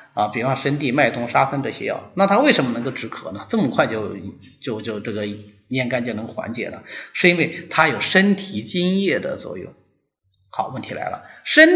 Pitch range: 115-165 Hz